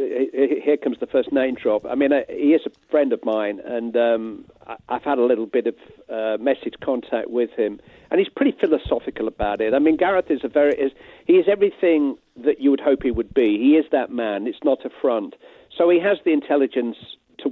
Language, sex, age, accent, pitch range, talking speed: English, male, 50-69, British, 120-170 Hz, 215 wpm